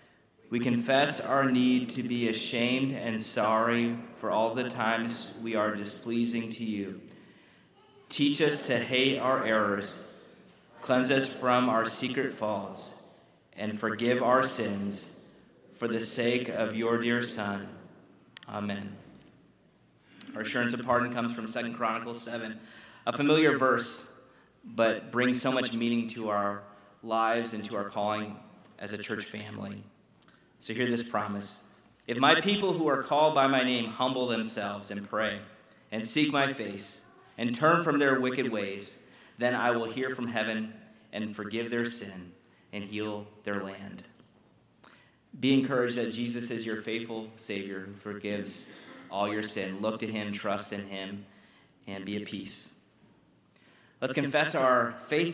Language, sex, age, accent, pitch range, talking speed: English, male, 30-49, American, 105-125 Hz, 150 wpm